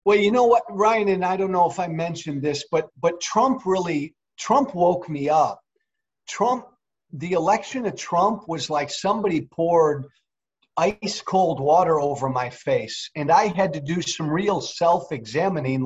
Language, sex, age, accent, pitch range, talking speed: English, male, 40-59, American, 155-195 Hz, 165 wpm